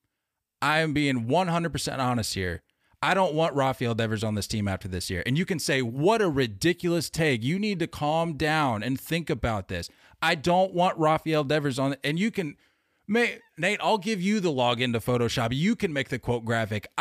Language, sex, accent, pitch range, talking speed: English, male, American, 130-185 Hz, 205 wpm